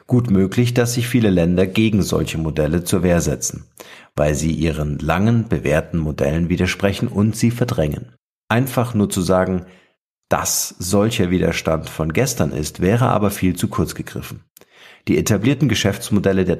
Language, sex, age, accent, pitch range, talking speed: German, male, 50-69, German, 85-110 Hz, 150 wpm